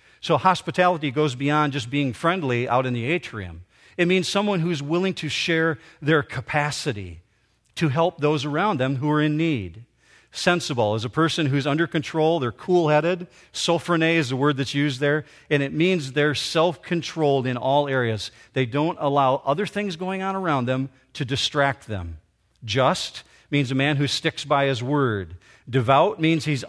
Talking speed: 175 wpm